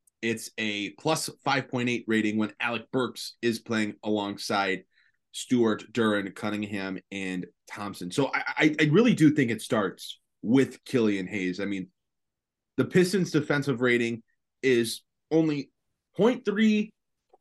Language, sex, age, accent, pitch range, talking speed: English, male, 20-39, American, 110-145 Hz, 130 wpm